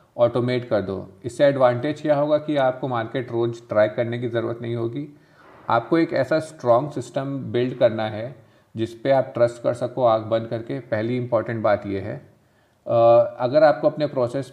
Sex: male